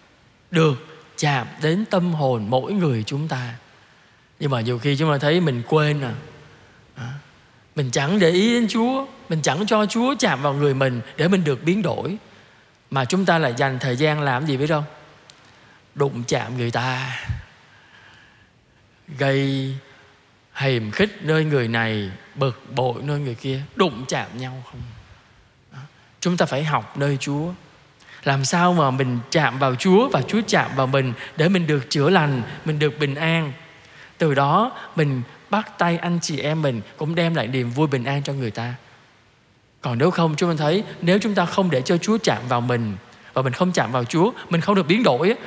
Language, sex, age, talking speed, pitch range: Vietnamese, male, 20-39, 185 wpm, 130-185 Hz